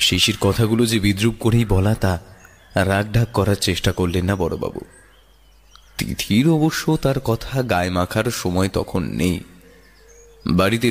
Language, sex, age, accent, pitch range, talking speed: Bengali, male, 30-49, native, 95-120 Hz, 125 wpm